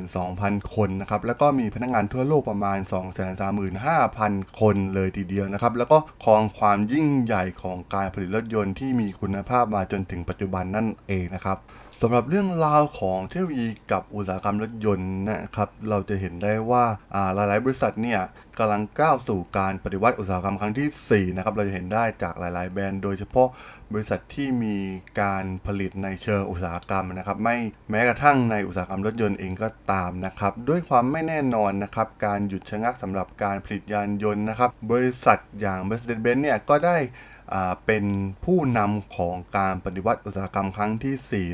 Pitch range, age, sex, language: 95-120 Hz, 20-39, male, Thai